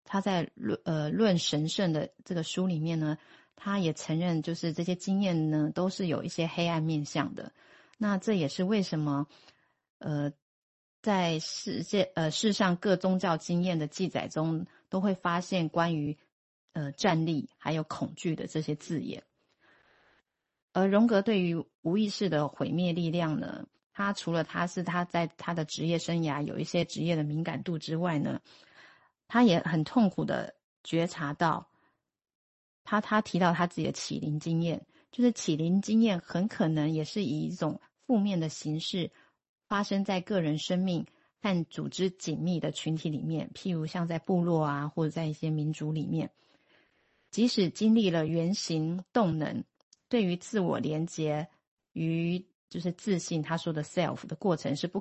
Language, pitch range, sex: Chinese, 155-190 Hz, female